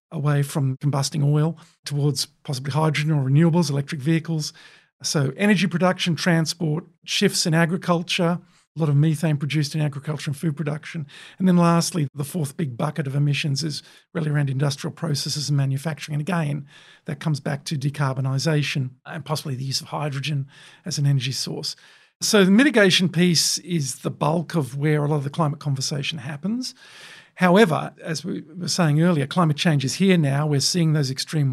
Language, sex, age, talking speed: English, male, 50-69, 175 wpm